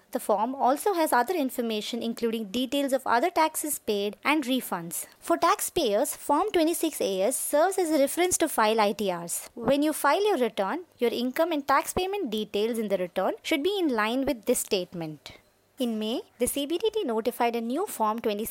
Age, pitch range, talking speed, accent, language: 20-39, 220-310 Hz, 175 wpm, Indian, English